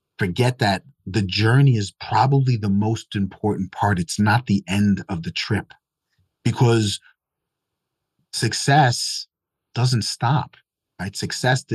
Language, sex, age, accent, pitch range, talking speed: English, male, 30-49, American, 100-130 Hz, 115 wpm